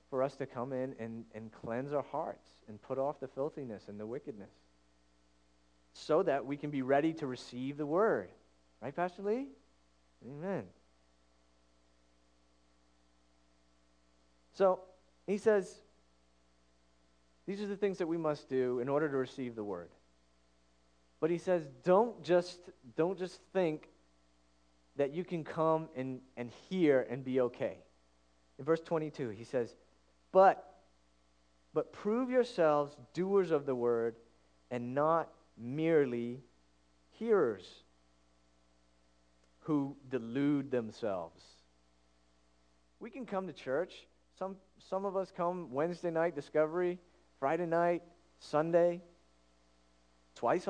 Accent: American